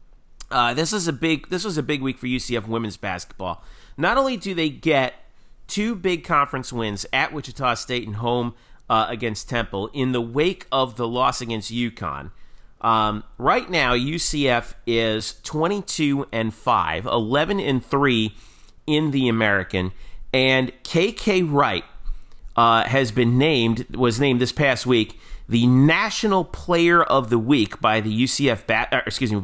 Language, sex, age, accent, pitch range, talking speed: English, male, 40-59, American, 115-145 Hz, 160 wpm